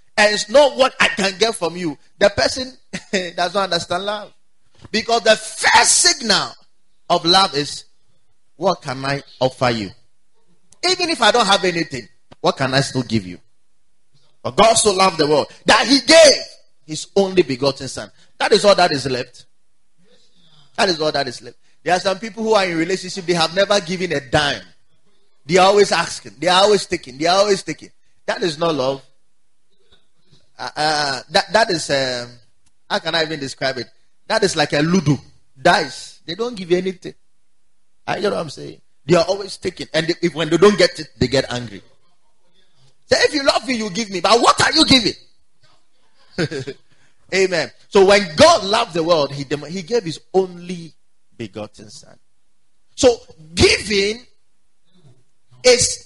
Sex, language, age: male, English, 30-49